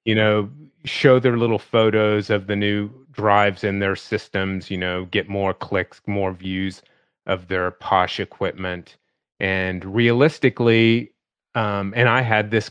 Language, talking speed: English, 145 wpm